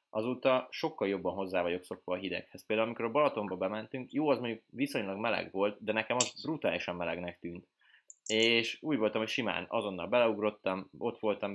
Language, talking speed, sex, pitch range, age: Hungarian, 175 wpm, male, 95-125 Hz, 20-39